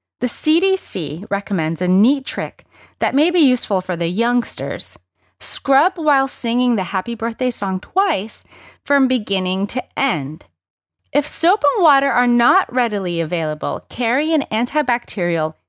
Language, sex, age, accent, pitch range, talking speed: English, female, 30-49, American, 185-270 Hz, 140 wpm